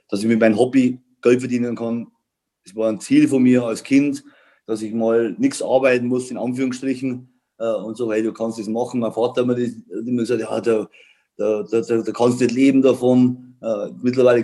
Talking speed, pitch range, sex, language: 215 wpm, 115-135 Hz, male, German